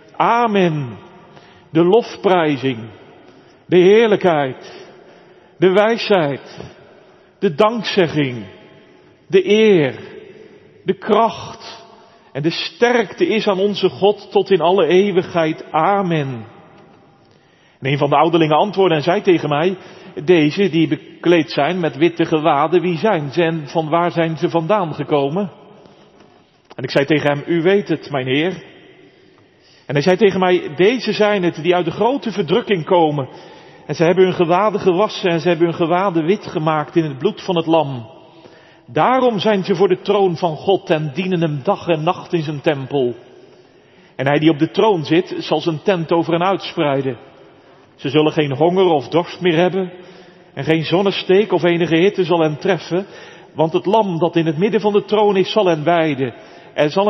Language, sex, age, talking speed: Dutch, male, 40-59, 165 wpm